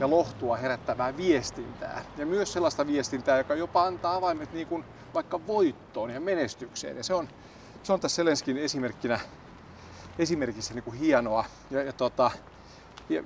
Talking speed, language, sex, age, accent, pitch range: 140 wpm, Finnish, male, 40-59, native, 125-175 Hz